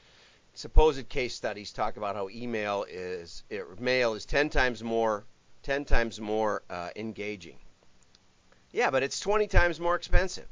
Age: 40-59